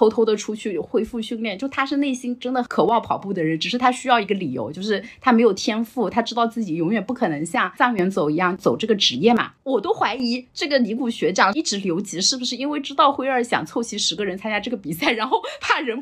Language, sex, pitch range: Chinese, female, 190-260 Hz